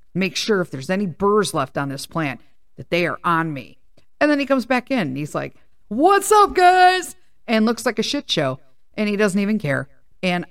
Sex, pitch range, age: female, 160-220 Hz, 50-69